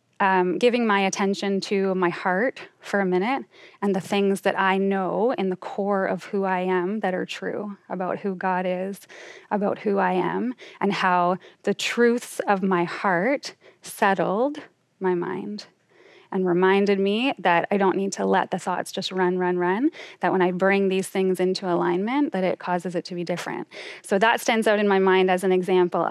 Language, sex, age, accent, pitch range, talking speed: English, female, 20-39, American, 185-220 Hz, 195 wpm